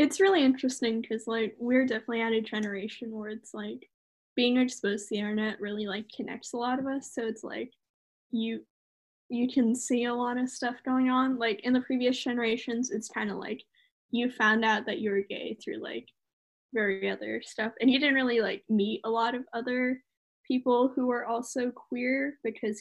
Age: 10-29